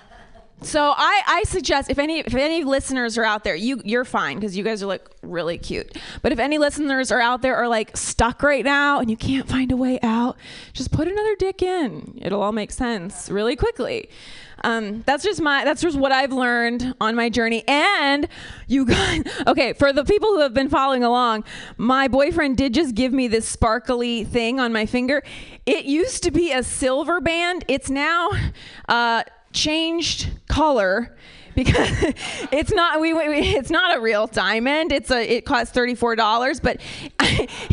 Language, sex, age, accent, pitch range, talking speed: English, female, 20-39, American, 235-315 Hz, 190 wpm